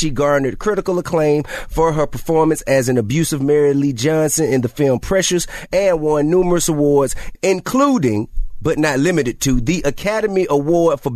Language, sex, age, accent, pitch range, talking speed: English, male, 30-49, American, 130-165 Hz, 160 wpm